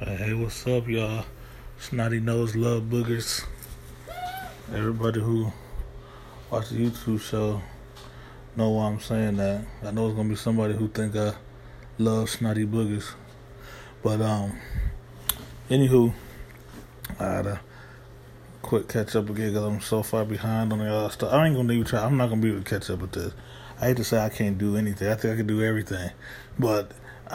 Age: 20-39